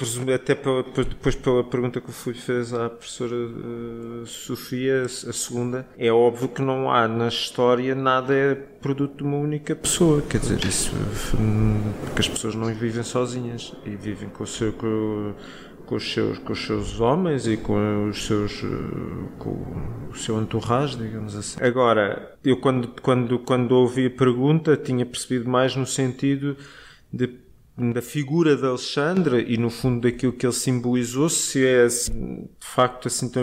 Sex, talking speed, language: male, 160 wpm, Portuguese